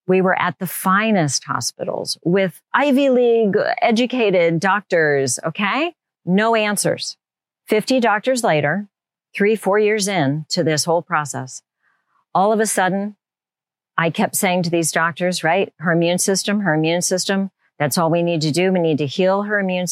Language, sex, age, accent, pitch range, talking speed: English, female, 40-59, American, 160-210 Hz, 165 wpm